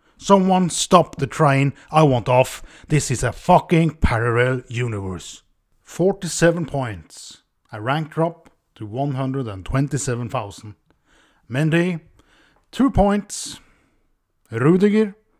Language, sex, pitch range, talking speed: English, male, 120-185 Hz, 95 wpm